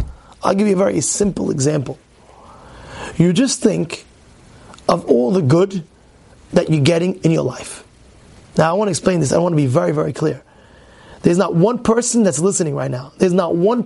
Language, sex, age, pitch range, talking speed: English, male, 30-49, 165-245 Hz, 190 wpm